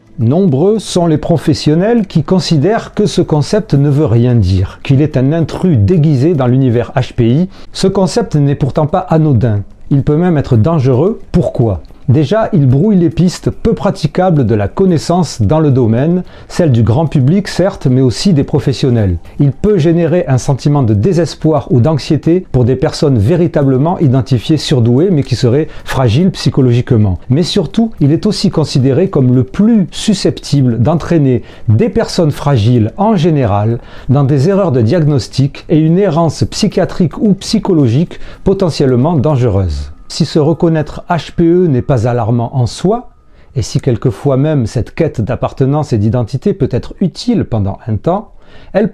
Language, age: French, 40-59